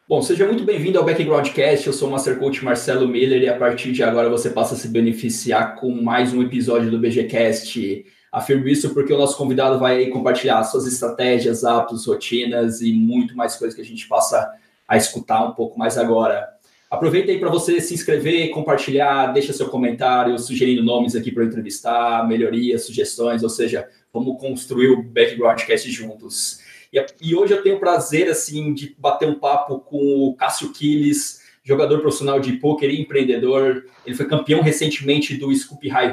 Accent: Brazilian